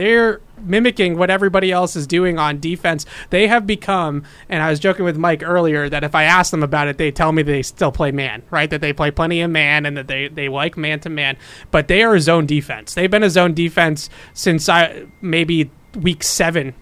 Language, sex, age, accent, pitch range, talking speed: English, male, 30-49, American, 150-185 Hz, 220 wpm